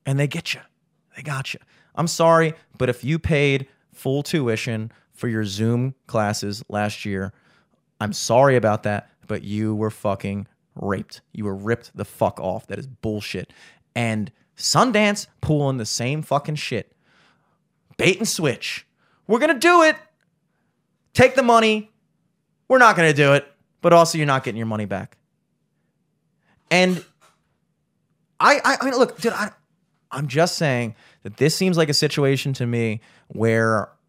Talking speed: 160 wpm